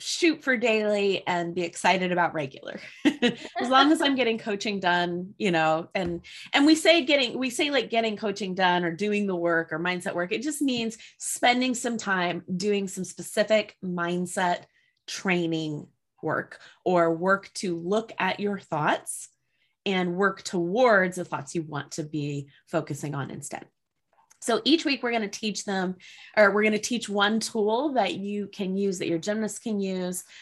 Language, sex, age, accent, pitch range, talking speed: English, female, 20-39, American, 180-240 Hz, 180 wpm